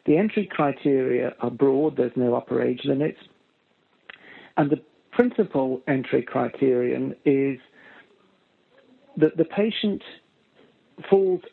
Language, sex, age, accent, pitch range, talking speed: English, male, 50-69, British, 130-165 Hz, 105 wpm